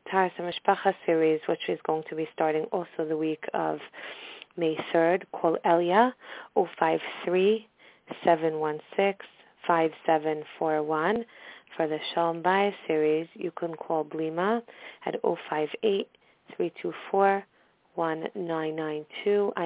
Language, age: English, 30-49